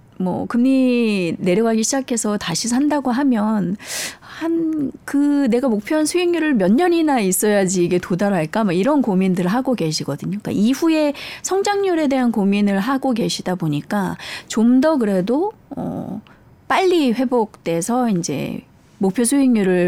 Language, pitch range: Korean, 185-265 Hz